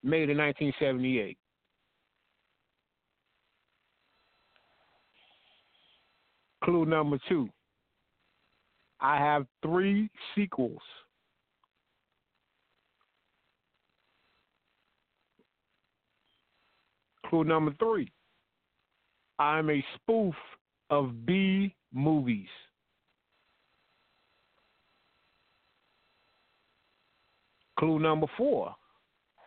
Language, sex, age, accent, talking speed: English, male, 50-69, American, 45 wpm